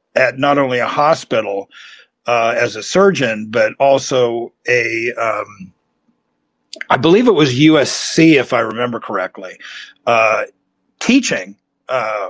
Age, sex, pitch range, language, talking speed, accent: 50-69, male, 130-170 Hz, English, 115 wpm, American